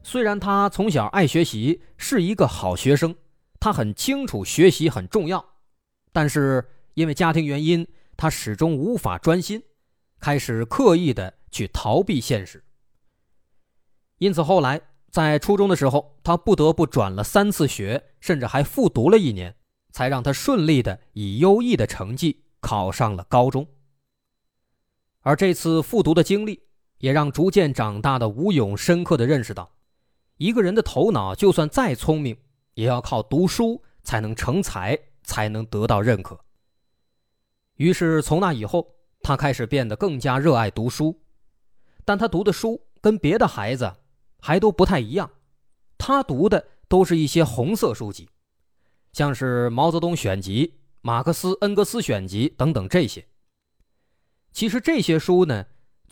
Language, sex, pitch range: Chinese, male, 120-180 Hz